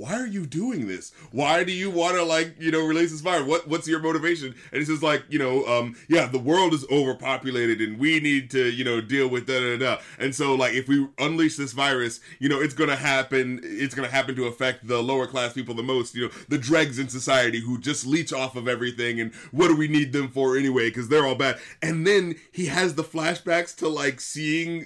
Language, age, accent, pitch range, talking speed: English, 30-49, American, 130-160 Hz, 240 wpm